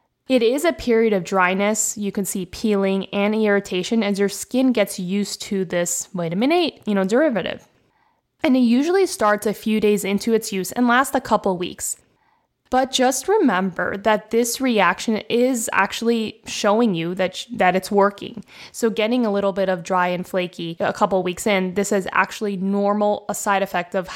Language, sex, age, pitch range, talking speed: English, female, 10-29, 190-230 Hz, 195 wpm